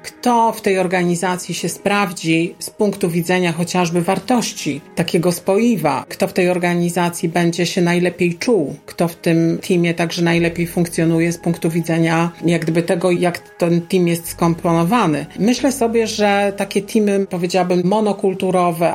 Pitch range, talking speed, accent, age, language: 170-200 Hz, 145 wpm, native, 40-59, Polish